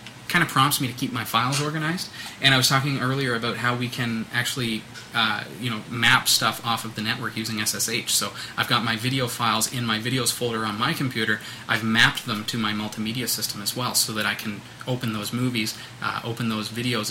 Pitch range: 115-135 Hz